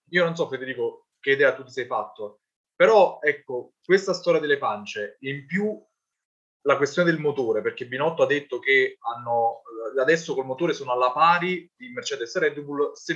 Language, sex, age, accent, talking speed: Italian, male, 20-39, native, 180 wpm